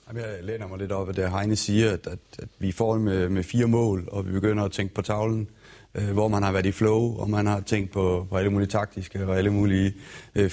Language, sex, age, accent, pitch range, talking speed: Danish, male, 30-49, native, 90-110 Hz, 245 wpm